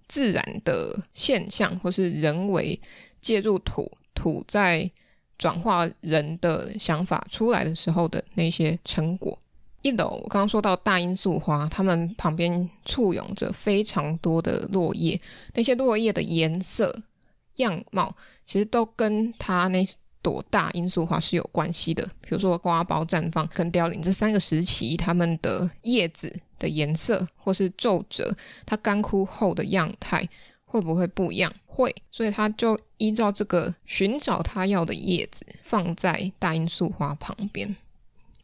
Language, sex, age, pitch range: Chinese, female, 20-39, 170-205 Hz